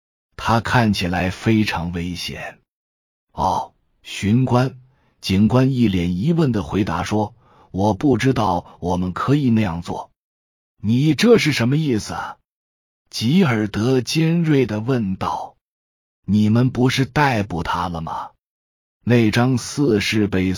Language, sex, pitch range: Chinese, male, 90-125 Hz